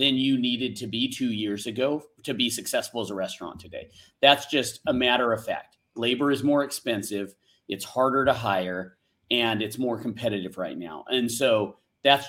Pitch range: 115-165 Hz